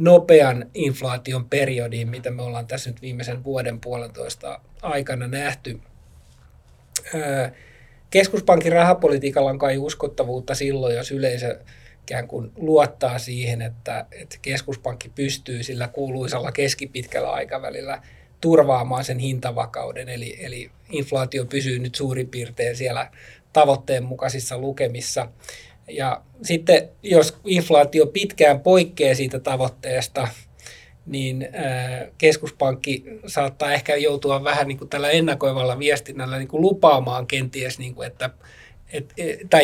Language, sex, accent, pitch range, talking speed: Finnish, male, native, 125-145 Hz, 110 wpm